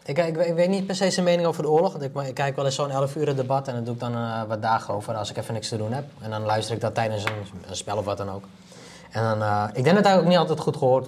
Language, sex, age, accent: Dutch, male, 20-39, Dutch